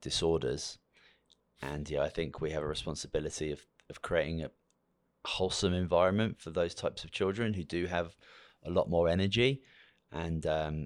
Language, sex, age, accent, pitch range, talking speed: English, male, 20-39, British, 75-90 Hz, 160 wpm